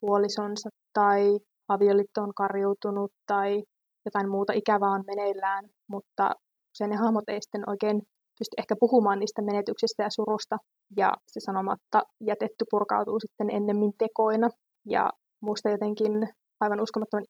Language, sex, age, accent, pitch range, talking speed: Finnish, female, 20-39, native, 210-225 Hz, 130 wpm